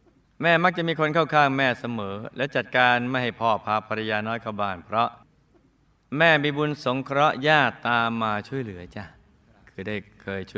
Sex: male